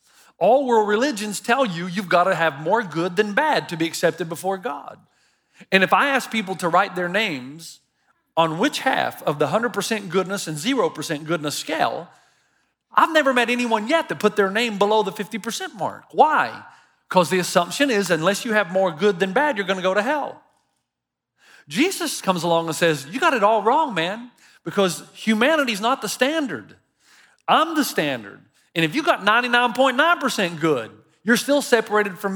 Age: 40-59